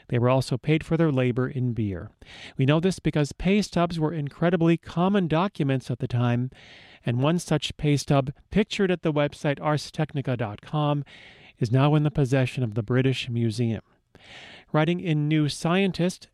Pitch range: 130-170 Hz